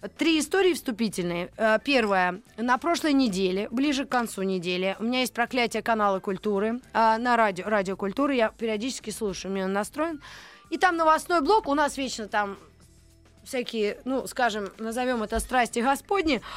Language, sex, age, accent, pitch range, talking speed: Russian, female, 20-39, native, 210-320 Hz, 150 wpm